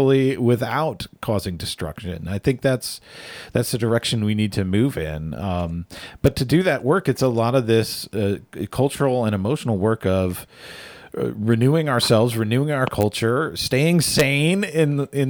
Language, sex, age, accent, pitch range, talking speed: English, male, 40-59, American, 105-145 Hz, 160 wpm